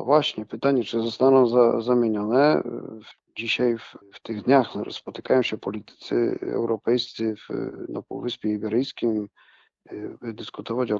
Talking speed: 125 wpm